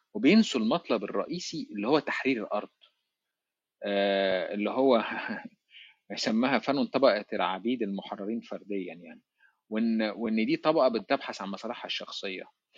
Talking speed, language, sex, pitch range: 115 wpm, Arabic, male, 100-140 Hz